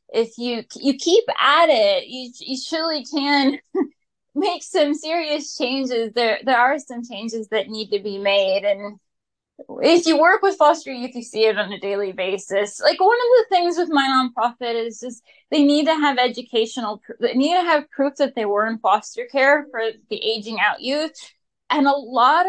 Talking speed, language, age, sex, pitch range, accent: 190 wpm, English, 20-39, female, 235-300 Hz, American